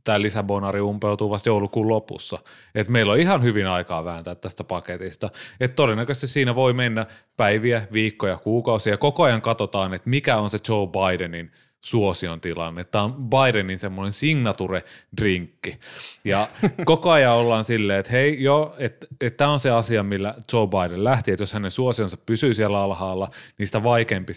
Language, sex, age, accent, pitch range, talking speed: Finnish, male, 30-49, native, 95-120 Hz, 165 wpm